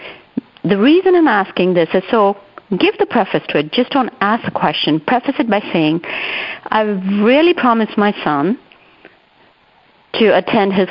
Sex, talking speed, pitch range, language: female, 160 wpm, 170-240 Hz, English